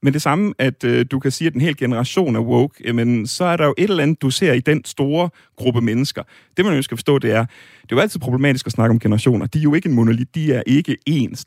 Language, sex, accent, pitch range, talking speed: Danish, male, native, 120-150 Hz, 285 wpm